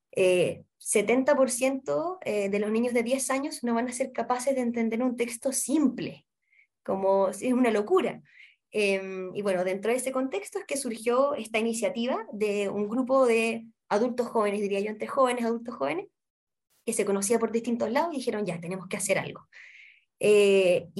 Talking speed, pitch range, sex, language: 175 wpm, 205-255 Hz, female, Spanish